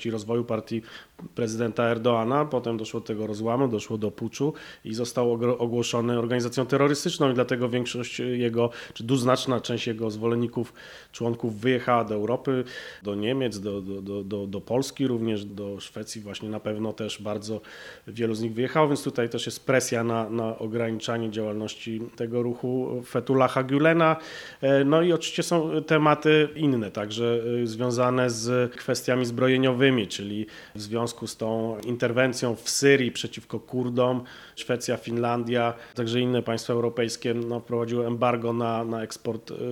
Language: Polish